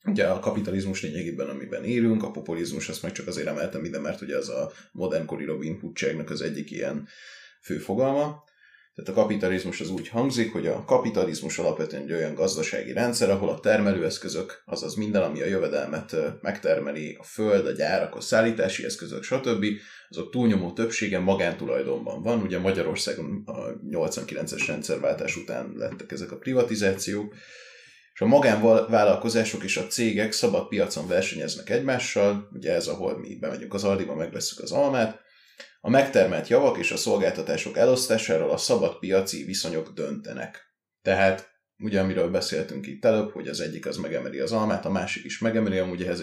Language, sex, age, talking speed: Hungarian, male, 20-39, 155 wpm